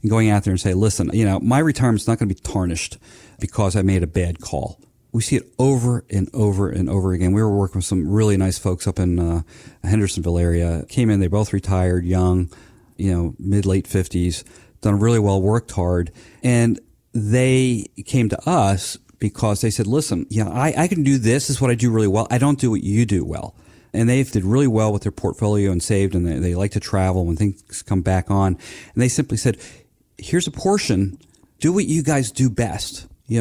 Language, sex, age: English, male, 40-59